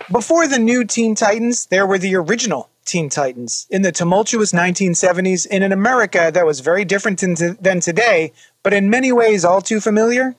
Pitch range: 180-240 Hz